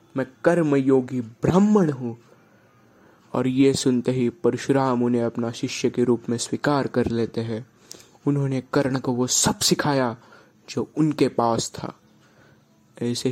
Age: 20-39